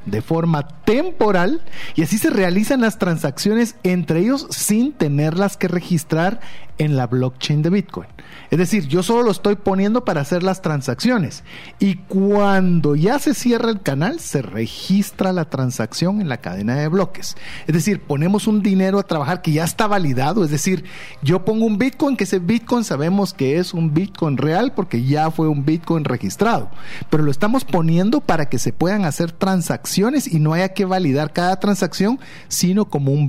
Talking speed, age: 180 wpm, 40-59